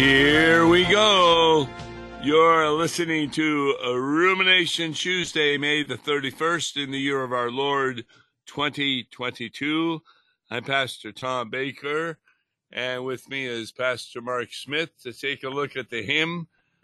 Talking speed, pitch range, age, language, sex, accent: 130 wpm, 120-155 Hz, 60-79, English, male, American